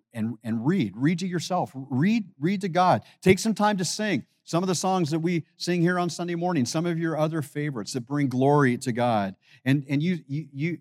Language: English